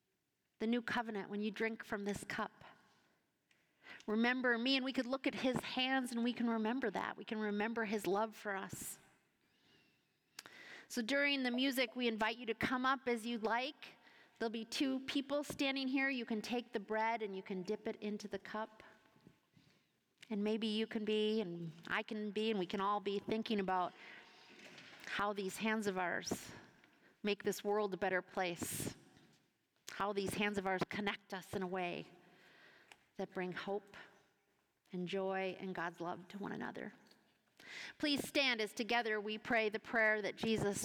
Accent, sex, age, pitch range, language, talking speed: American, female, 40-59, 190-230 Hz, English, 175 wpm